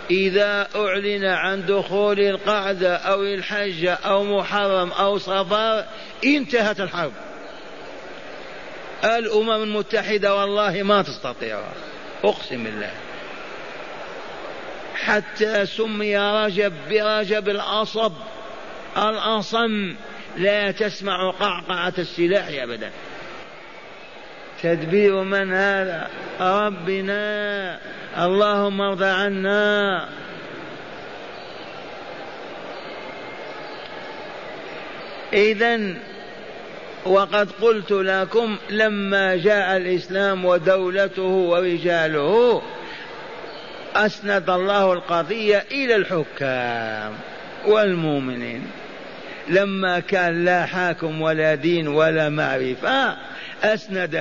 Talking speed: 70 wpm